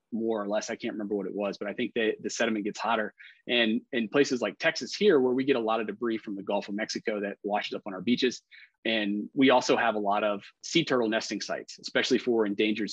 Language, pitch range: English, 105-125 Hz